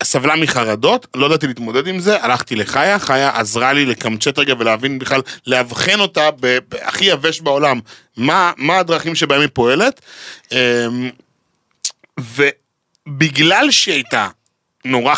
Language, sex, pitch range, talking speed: Hebrew, male, 135-180 Hz, 125 wpm